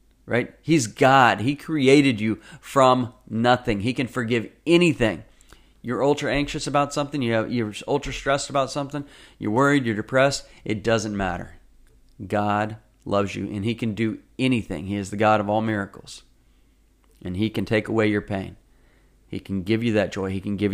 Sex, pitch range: male, 95-115 Hz